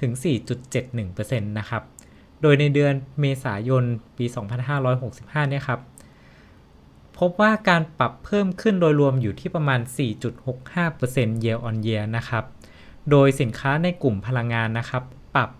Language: Thai